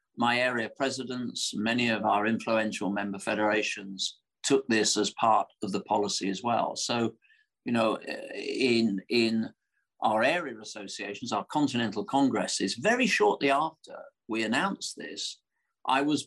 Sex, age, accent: male, 50-69, British